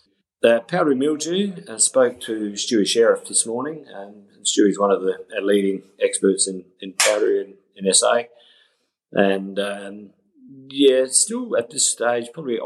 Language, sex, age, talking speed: English, male, 30-49, 145 wpm